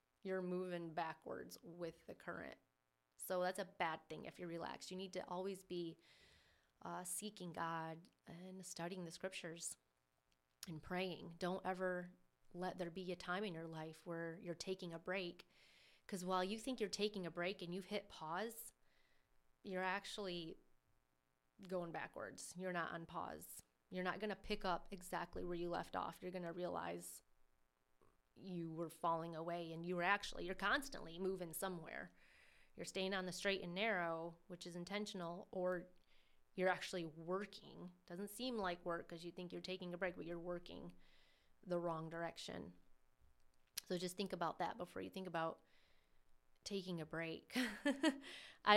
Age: 30-49